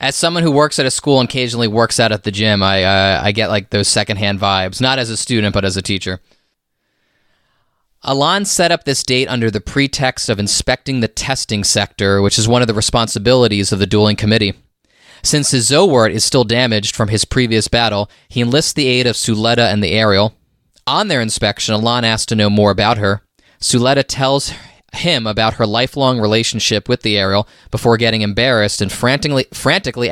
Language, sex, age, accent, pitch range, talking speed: English, male, 20-39, American, 100-125 Hz, 195 wpm